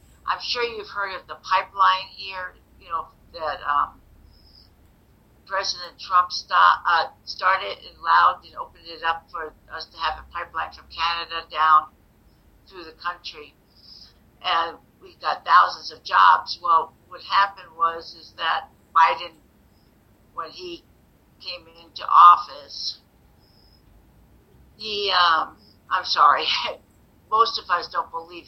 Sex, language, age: female, English, 60-79